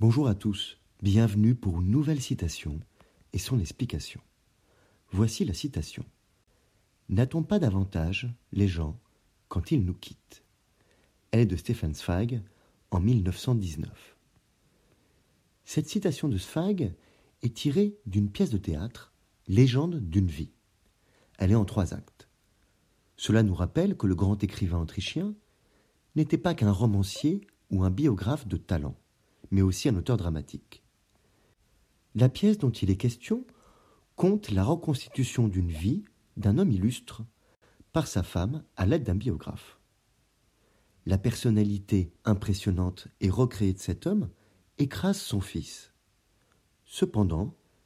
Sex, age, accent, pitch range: male, 40-59, French, 95-130 Hz